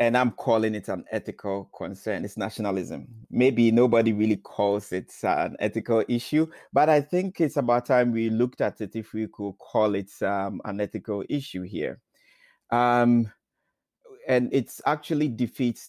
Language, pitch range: English, 105-125 Hz